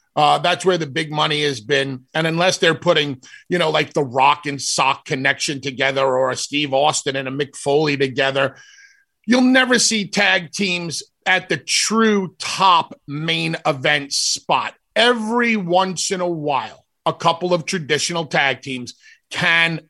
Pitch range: 145-200 Hz